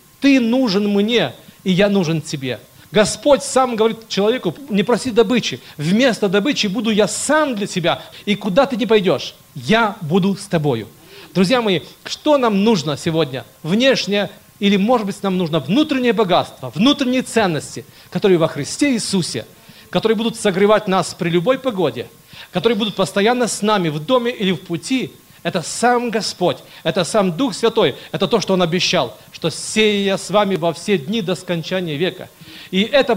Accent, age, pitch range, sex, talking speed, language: native, 40-59, 175-230 Hz, male, 165 wpm, Russian